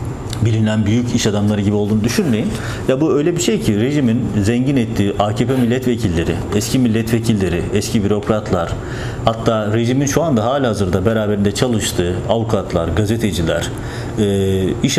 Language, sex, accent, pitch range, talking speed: Turkish, male, native, 100-120 Hz, 130 wpm